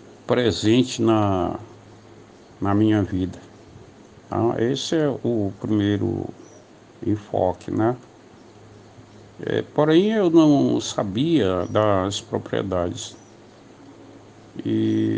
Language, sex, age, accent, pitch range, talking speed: Portuguese, male, 60-79, Brazilian, 105-120 Hz, 80 wpm